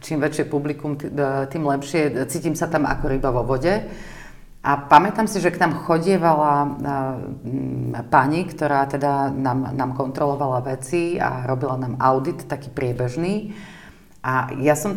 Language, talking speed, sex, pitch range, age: Slovak, 140 wpm, female, 140-180 Hz, 40-59